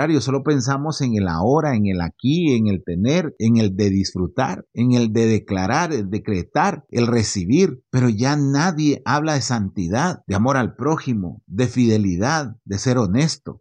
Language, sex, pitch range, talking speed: Spanish, male, 115-150 Hz, 170 wpm